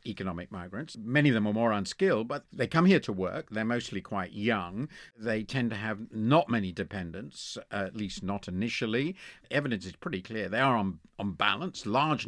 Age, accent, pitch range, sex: 50-69, British, 105-150 Hz, male